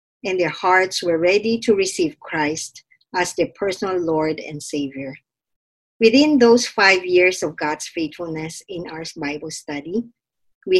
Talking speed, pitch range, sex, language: 145 wpm, 160-215 Hz, male, English